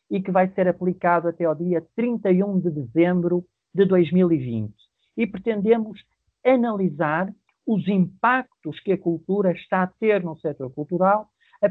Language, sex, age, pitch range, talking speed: Portuguese, male, 50-69, 165-200 Hz, 145 wpm